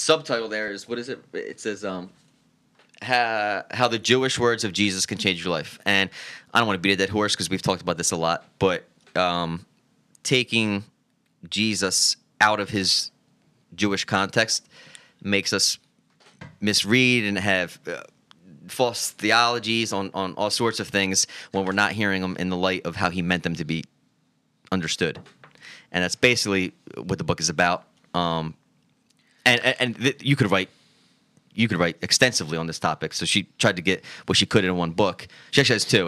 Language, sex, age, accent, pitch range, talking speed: English, male, 20-39, American, 90-115 Hz, 185 wpm